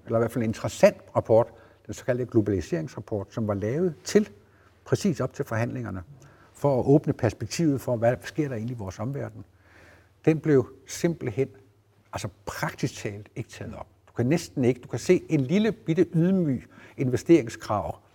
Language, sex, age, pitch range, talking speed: Danish, male, 60-79, 105-140 Hz, 170 wpm